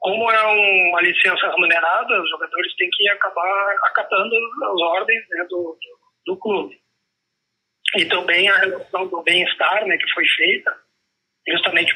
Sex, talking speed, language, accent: male, 150 wpm, Portuguese, Brazilian